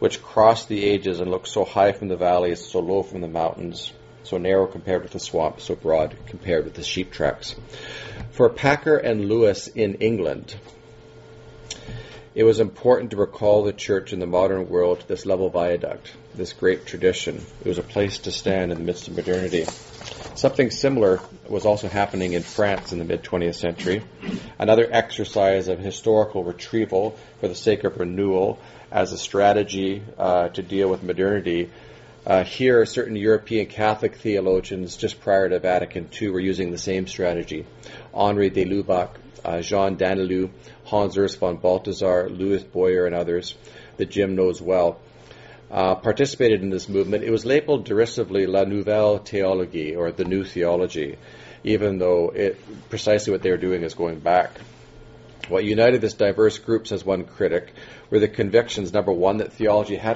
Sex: male